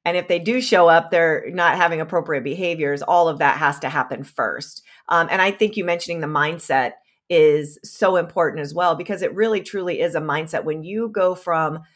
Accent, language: American, English